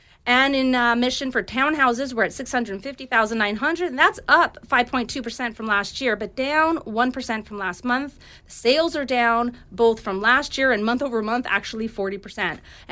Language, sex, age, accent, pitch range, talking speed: English, female, 30-49, American, 210-270 Hz, 165 wpm